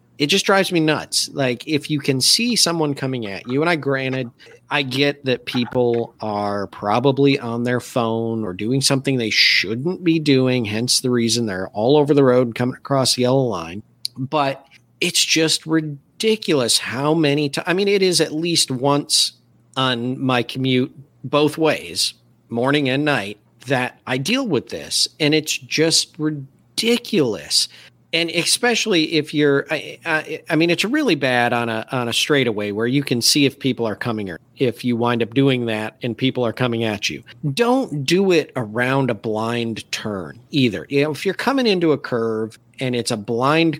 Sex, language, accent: male, English, American